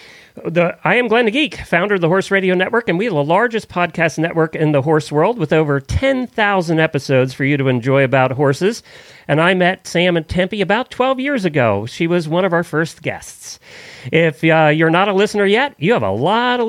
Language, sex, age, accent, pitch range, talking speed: English, male, 40-59, American, 150-205 Hz, 225 wpm